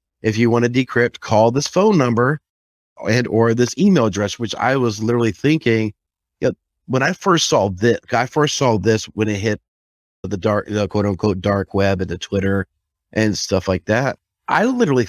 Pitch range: 95-120 Hz